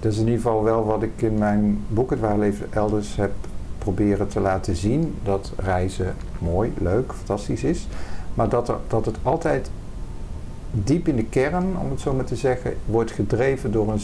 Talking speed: 190 wpm